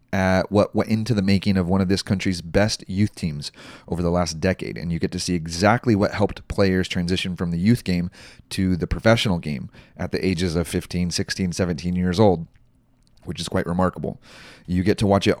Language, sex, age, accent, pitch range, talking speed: English, male, 30-49, American, 90-110 Hz, 205 wpm